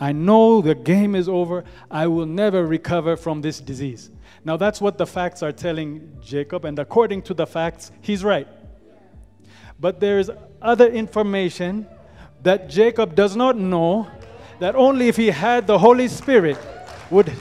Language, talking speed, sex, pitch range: English, 160 wpm, male, 165-225 Hz